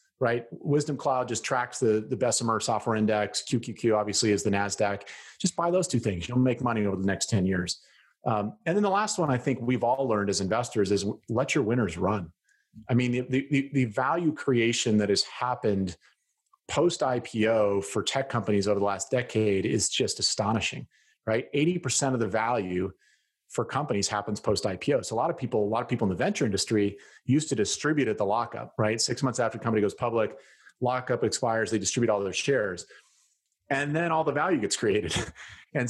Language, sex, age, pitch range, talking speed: English, male, 40-59, 105-130 Hz, 195 wpm